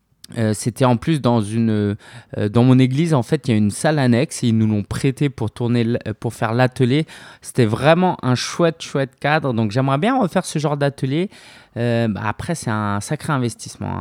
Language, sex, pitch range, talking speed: French, male, 115-155 Hz, 210 wpm